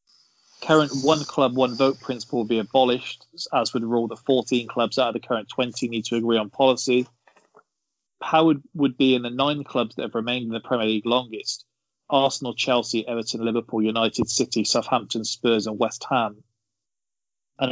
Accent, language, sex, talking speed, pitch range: British, English, male, 175 wpm, 110-130 Hz